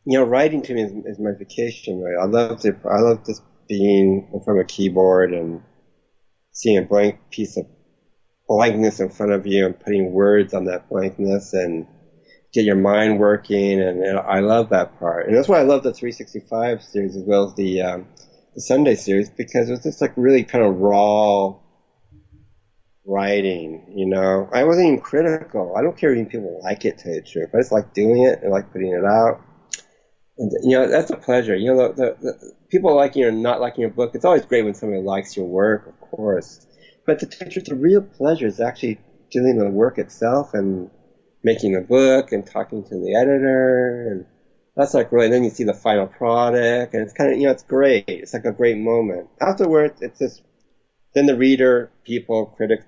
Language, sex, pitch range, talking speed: English, male, 95-120 Hz, 210 wpm